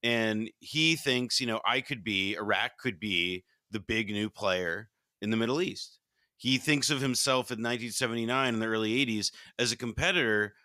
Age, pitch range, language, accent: 30-49, 105-130 Hz, English, American